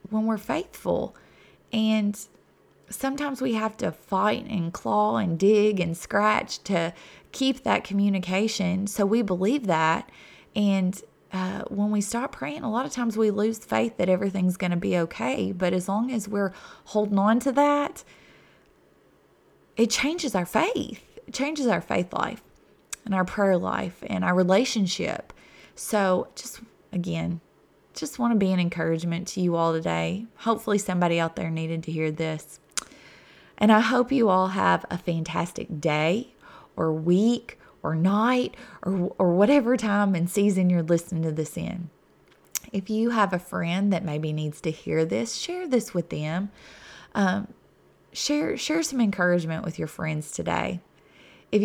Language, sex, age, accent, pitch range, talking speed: English, female, 20-39, American, 170-215 Hz, 160 wpm